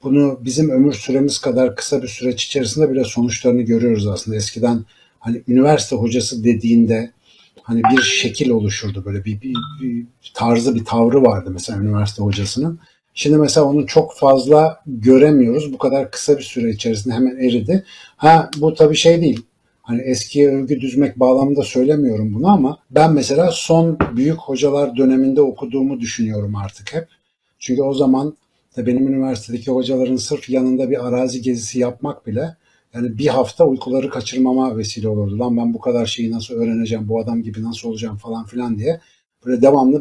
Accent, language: native, Turkish